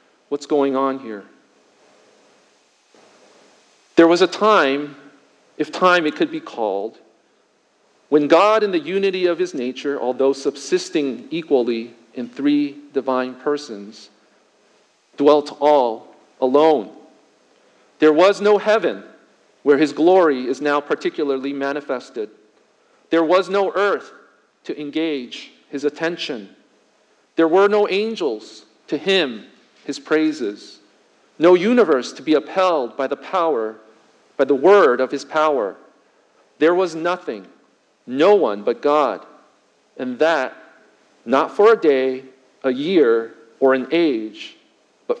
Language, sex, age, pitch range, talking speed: English, male, 40-59, 135-190 Hz, 120 wpm